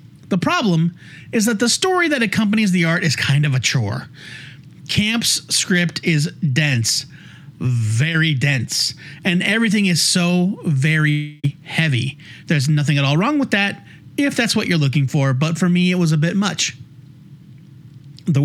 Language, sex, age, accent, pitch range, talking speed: English, male, 30-49, American, 145-180 Hz, 160 wpm